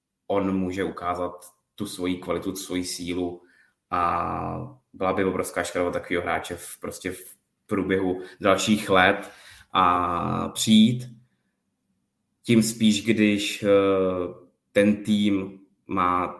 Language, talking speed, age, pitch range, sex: Czech, 105 wpm, 20-39, 90-100 Hz, male